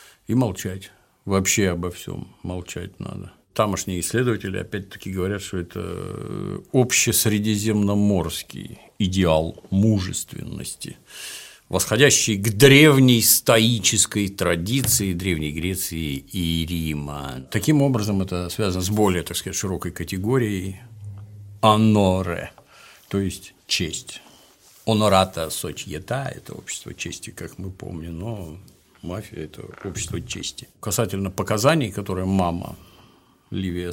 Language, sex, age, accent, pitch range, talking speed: Russian, male, 50-69, native, 90-110 Hz, 105 wpm